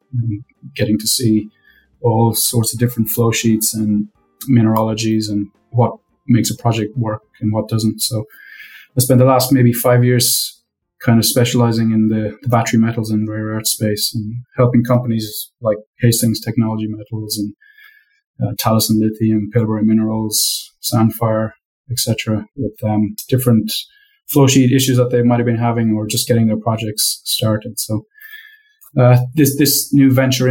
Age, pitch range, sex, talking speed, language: 20-39, 110-125 Hz, male, 160 wpm, English